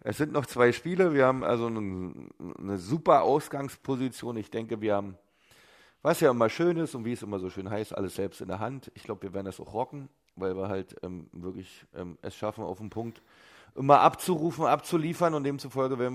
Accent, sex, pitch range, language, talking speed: German, male, 100-125 Hz, German, 210 wpm